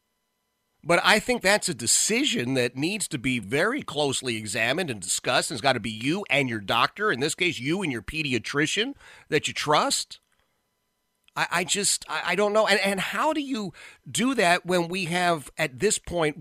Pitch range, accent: 125-180 Hz, American